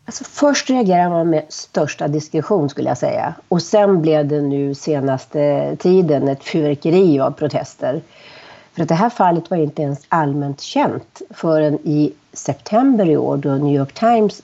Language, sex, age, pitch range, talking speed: Swedish, female, 40-59, 150-195 Hz, 165 wpm